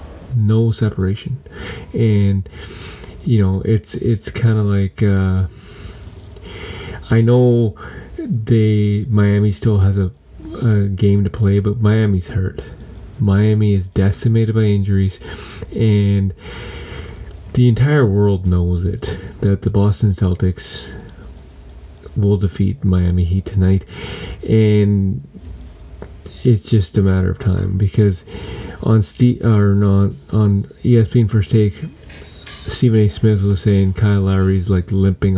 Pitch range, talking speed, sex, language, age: 95-110 Hz, 120 wpm, male, English, 30-49